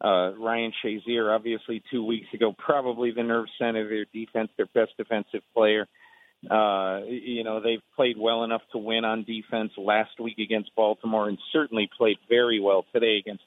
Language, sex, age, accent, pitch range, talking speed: English, male, 40-59, American, 110-130 Hz, 180 wpm